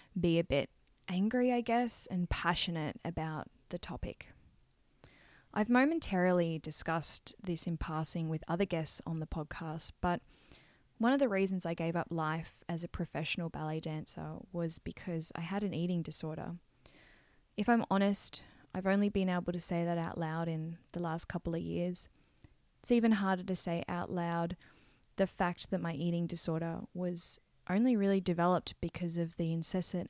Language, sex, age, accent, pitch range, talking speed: English, female, 10-29, Australian, 160-190 Hz, 165 wpm